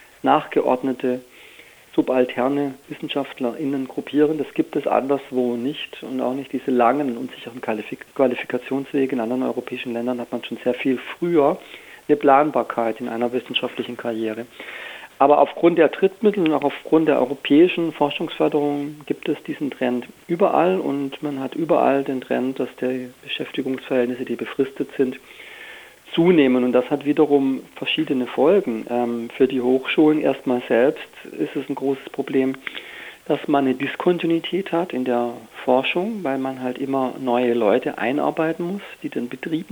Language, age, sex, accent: German, 40-59, male, German